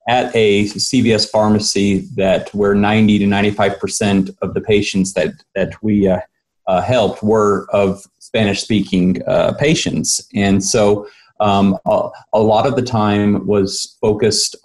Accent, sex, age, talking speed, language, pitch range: American, male, 30-49, 145 wpm, English, 100-125 Hz